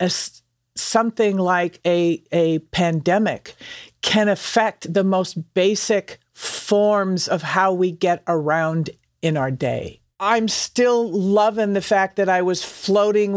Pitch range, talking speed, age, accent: 170-215 Hz, 130 wpm, 50-69, American